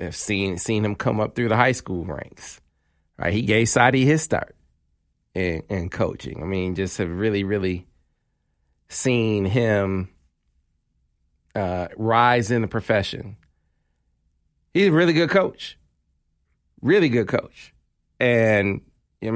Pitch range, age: 85-115 Hz, 40-59